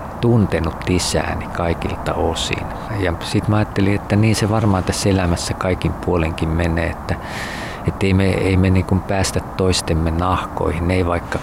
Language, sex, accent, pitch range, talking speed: Finnish, male, native, 85-100 Hz, 150 wpm